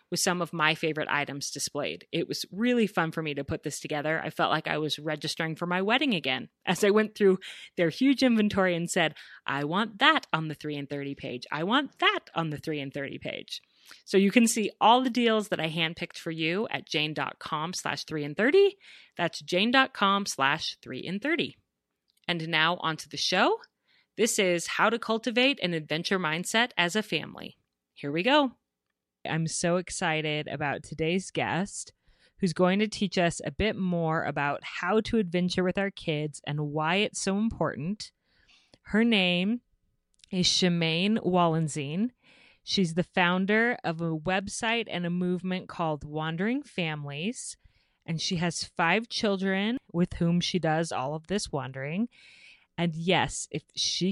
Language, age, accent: English, 30-49, American